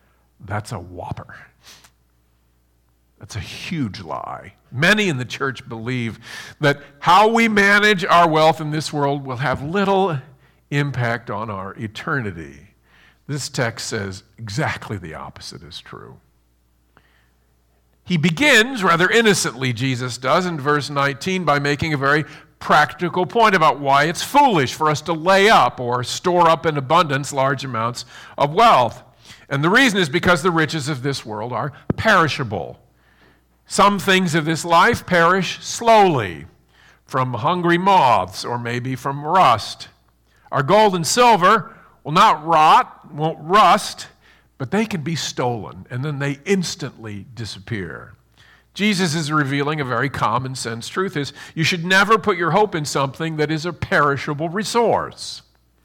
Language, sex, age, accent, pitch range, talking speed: English, male, 50-69, American, 120-175 Hz, 145 wpm